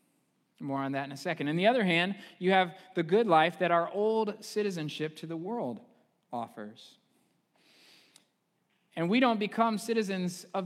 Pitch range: 140-170 Hz